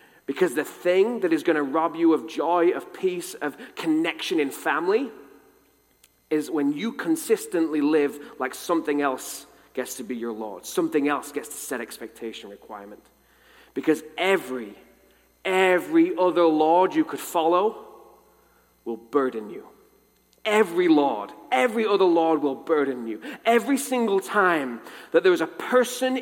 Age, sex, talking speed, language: 30-49, male, 145 wpm, English